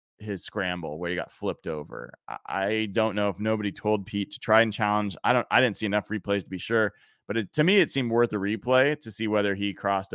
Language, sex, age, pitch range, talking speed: English, male, 30-49, 100-145 Hz, 250 wpm